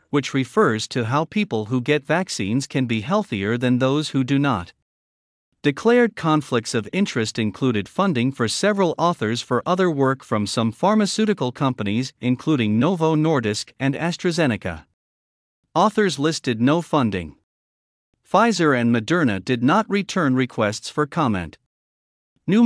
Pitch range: 115-170 Hz